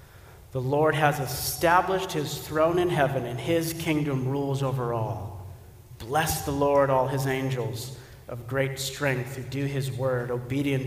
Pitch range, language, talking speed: 125-150 Hz, English, 155 wpm